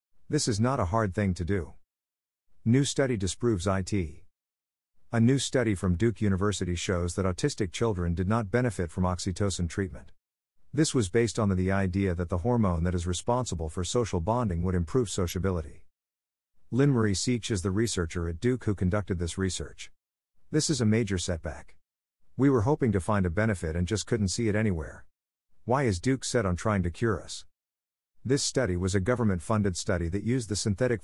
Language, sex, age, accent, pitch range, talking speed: English, male, 50-69, American, 90-115 Hz, 185 wpm